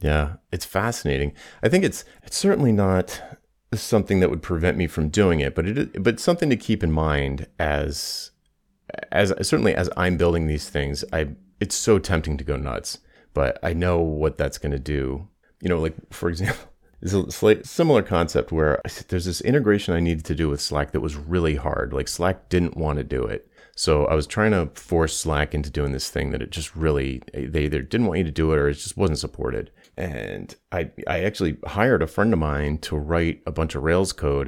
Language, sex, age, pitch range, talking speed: English, male, 30-49, 75-90 Hz, 215 wpm